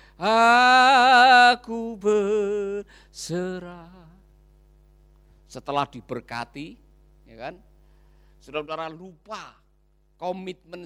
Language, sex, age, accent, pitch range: Indonesian, male, 50-69, native, 175-230 Hz